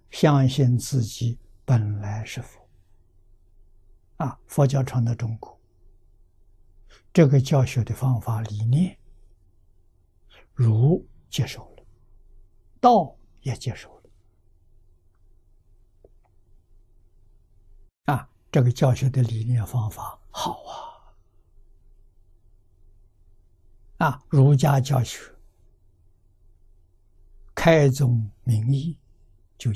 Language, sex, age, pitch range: Chinese, male, 60-79, 95-125 Hz